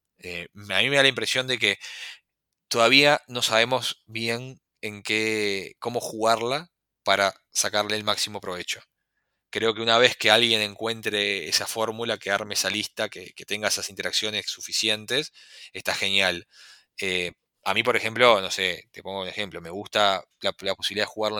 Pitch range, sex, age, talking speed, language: 100-115 Hz, male, 20-39, 170 wpm, English